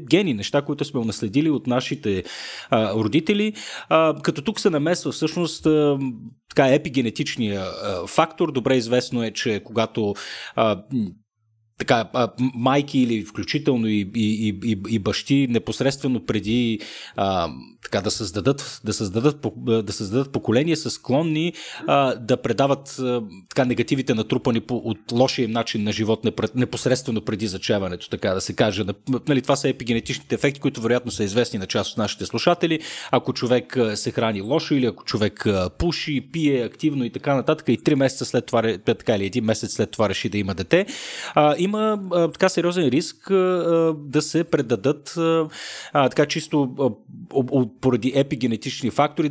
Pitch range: 110-145 Hz